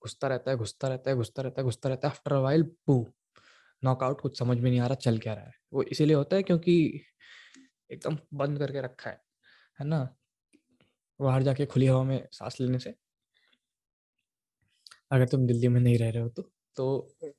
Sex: male